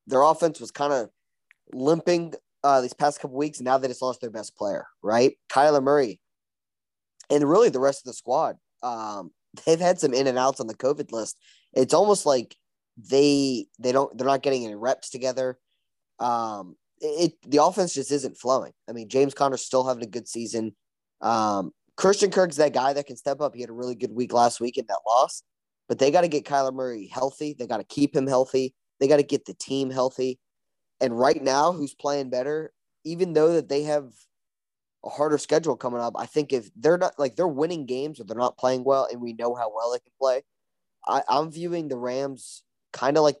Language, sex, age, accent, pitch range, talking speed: English, male, 20-39, American, 125-145 Hz, 215 wpm